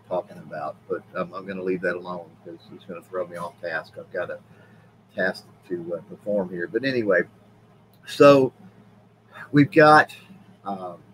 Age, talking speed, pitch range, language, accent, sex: 40-59, 170 wpm, 100-125 Hz, English, American, male